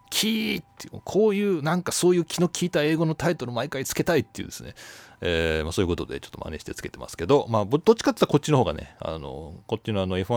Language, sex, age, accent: Japanese, male, 40-59, native